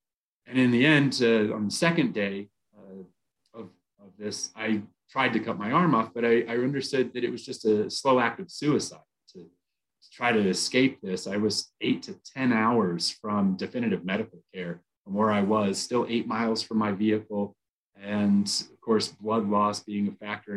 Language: English